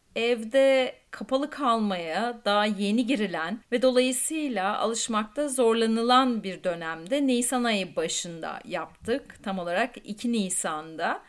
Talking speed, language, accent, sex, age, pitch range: 105 wpm, English, Turkish, female, 30-49, 195-270 Hz